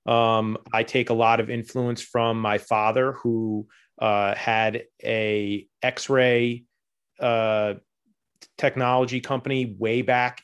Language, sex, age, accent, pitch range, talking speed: English, male, 30-49, American, 115-135 Hz, 115 wpm